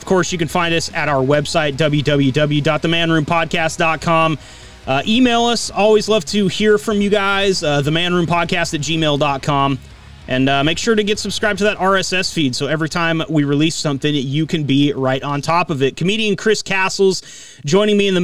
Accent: American